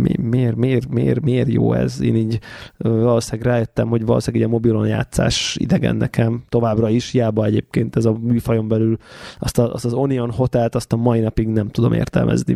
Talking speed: 195 wpm